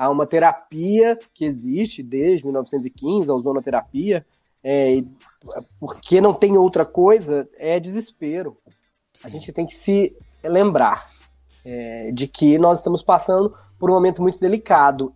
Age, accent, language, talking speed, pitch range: 20-39, Brazilian, Portuguese, 135 wpm, 135-185 Hz